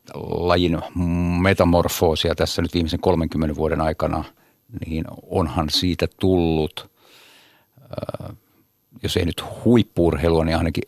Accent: native